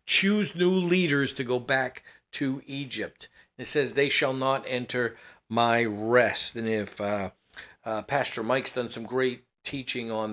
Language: English